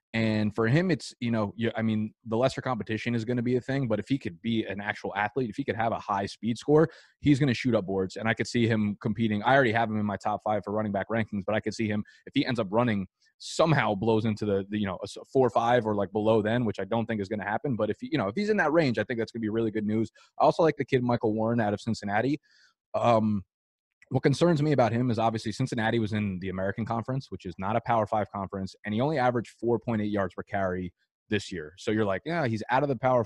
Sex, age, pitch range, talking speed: male, 20-39, 105-125 Hz, 280 wpm